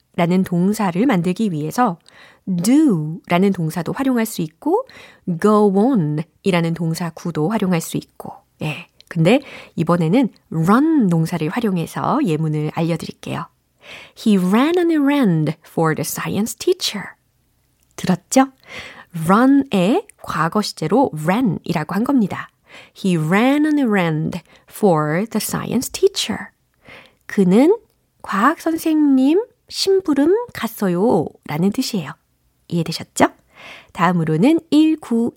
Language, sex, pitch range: Korean, female, 175-270 Hz